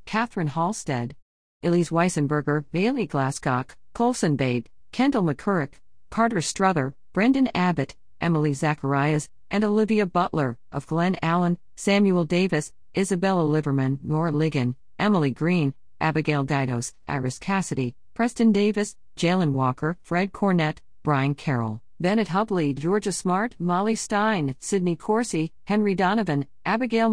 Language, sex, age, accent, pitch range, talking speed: English, female, 50-69, American, 150-205 Hz, 115 wpm